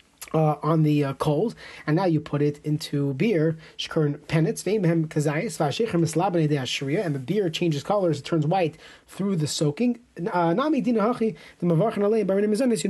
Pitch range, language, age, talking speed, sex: 155-190 Hz, English, 30-49, 110 wpm, male